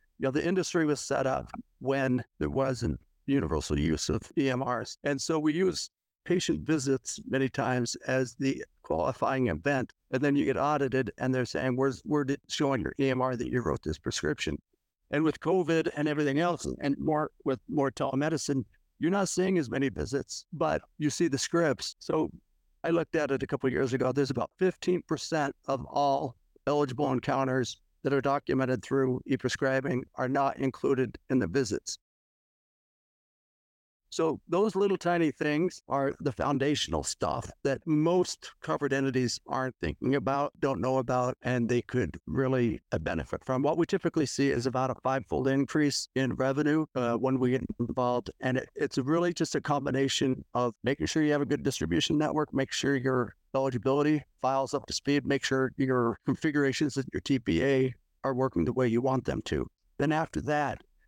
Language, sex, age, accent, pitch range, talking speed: English, male, 60-79, American, 130-150 Hz, 175 wpm